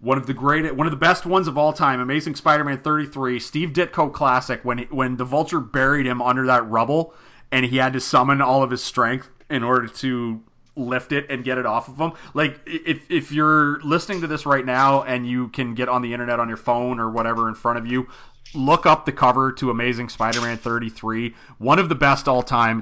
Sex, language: male, English